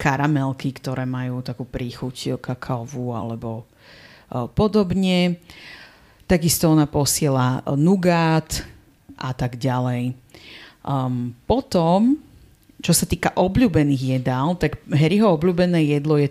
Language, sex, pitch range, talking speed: Slovak, female, 130-160 Hz, 105 wpm